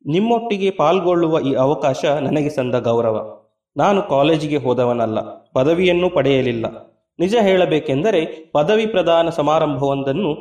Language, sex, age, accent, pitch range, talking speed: Kannada, male, 30-49, native, 145-185 Hz, 100 wpm